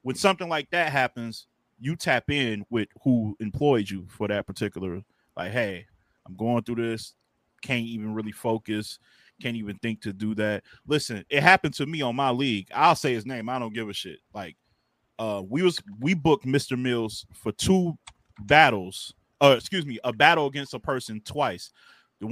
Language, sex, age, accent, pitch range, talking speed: English, male, 20-39, American, 110-145 Hz, 190 wpm